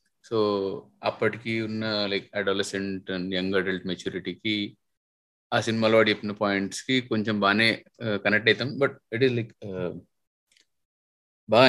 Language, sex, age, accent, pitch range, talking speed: Telugu, male, 20-39, native, 100-130 Hz, 125 wpm